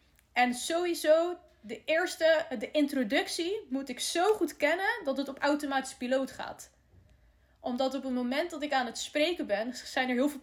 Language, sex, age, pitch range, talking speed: Dutch, female, 20-39, 235-295 Hz, 180 wpm